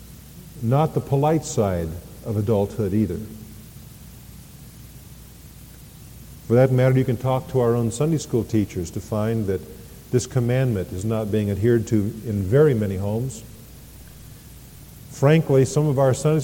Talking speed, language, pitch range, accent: 140 wpm, English, 110-145 Hz, American